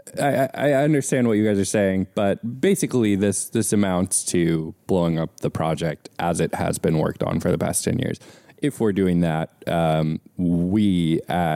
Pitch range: 80-95 Hz